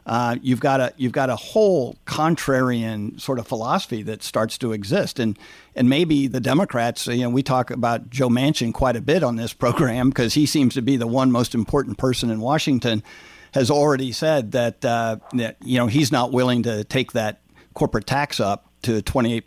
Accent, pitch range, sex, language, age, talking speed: American, 115-130 Hz, male, English, 50-69, 200 wpm